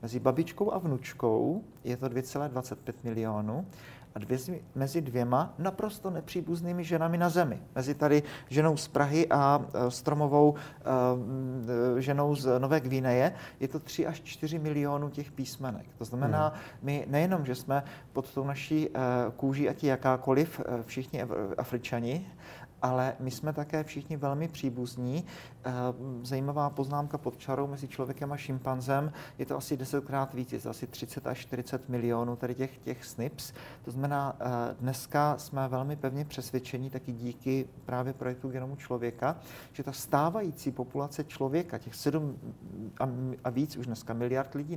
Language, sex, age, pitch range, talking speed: Czech, male, 40-59, 125-150 Hz, 145 wpm